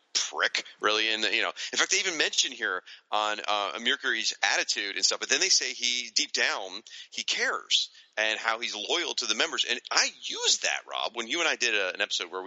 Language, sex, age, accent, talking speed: English, male, 40-59, American, 225 wpm